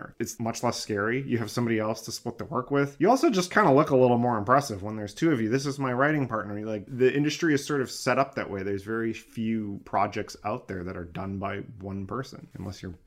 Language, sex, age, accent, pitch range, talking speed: English, male, 30-49, American, 110-140 Hz, 260 wpm